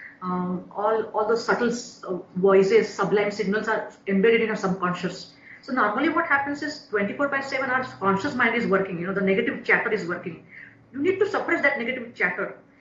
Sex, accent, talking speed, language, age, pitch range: female, Indian, 190 wpm, English, 30-49, 210-285 Hz